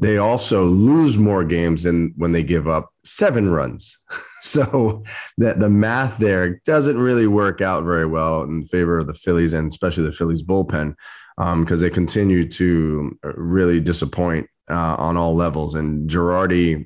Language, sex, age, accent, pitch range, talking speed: English, male, 20-39, American, 85-105 Hz, 165 wpm